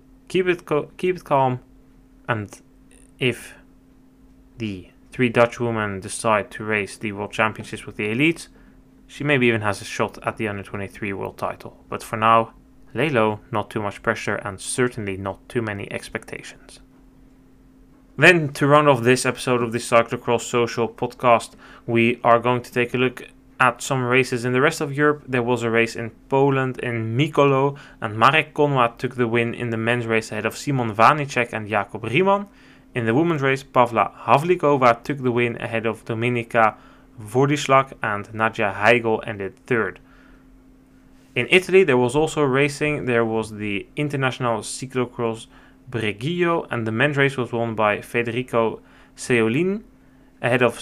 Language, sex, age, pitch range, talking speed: English, male, 10-29, 115-135 Hz, 160 wpm